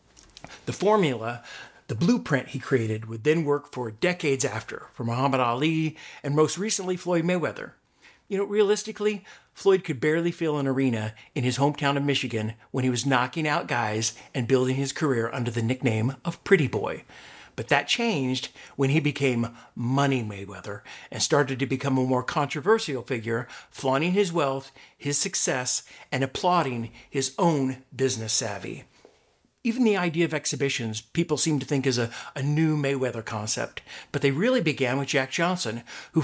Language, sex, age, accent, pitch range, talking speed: English, male, 50-69, American, 125-160 Hz, 165 wpm